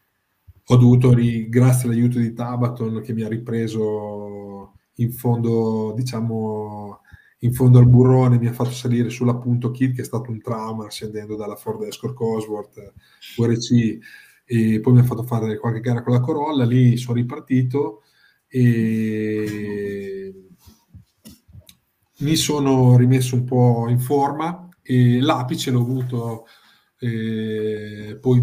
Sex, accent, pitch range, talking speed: male, native, 110-125 Hz, 135 wpm